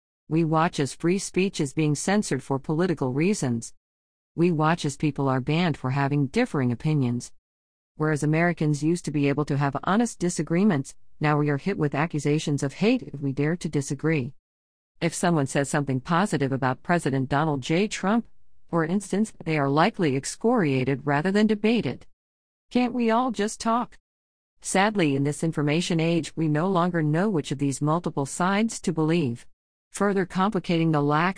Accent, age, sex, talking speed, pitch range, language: American, 50-69, female, 170 wpm, 140-185 Hz, English